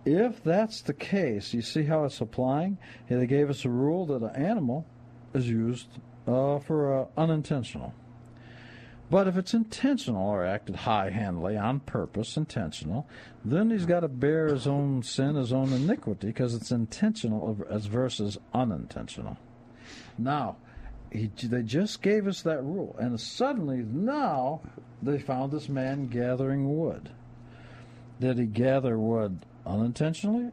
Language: English